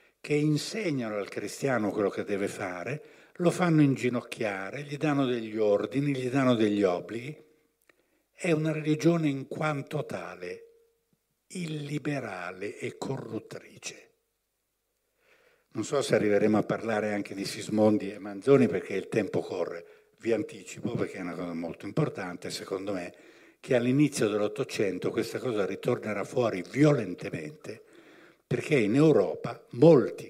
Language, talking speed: Italian, 130 wpm